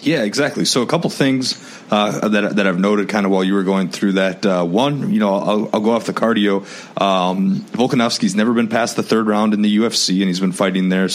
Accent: American